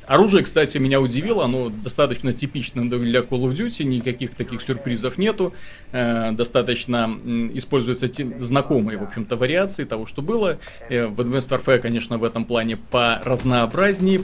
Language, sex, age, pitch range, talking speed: Russian, male, 30-49, 115-140 Hz, 135 wpm